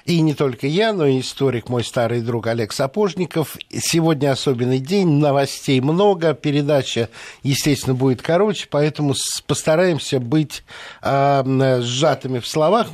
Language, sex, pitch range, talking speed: Russian, male, 130-160 Hz, 130 wpm